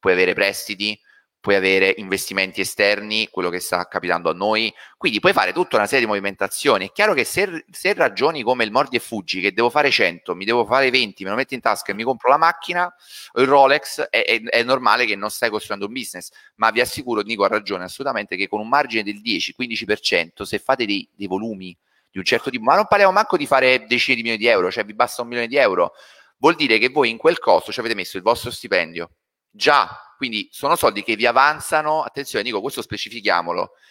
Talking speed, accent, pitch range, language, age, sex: 225 wpm, native, 95-130 Hz, Italian, 30-49, male